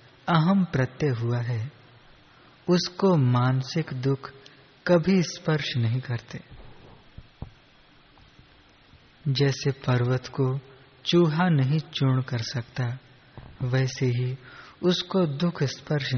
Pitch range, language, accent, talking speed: 125-150 Hz, Hindi, native, 90 wpm